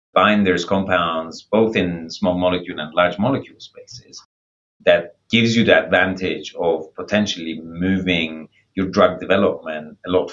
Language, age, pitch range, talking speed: English, 30-49, 85-100 Hz, 135 wpm